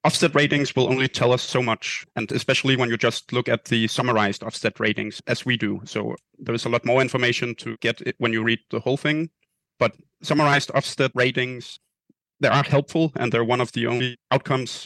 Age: 30-49